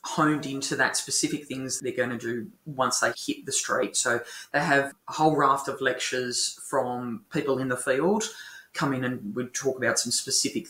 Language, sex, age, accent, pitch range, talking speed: English, female, 20-39, Australian, 130-165 Hz, 200 wpm